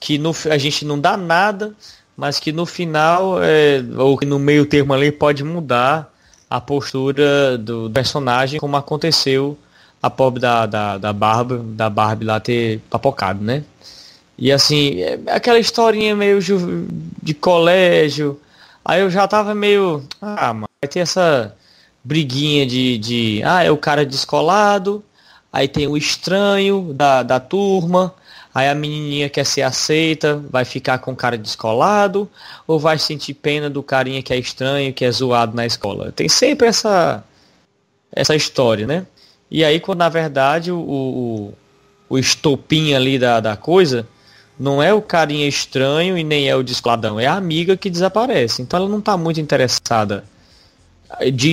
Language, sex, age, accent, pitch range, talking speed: English, male, 20-39, Brazilian, 125-170 Hz, 155 wpm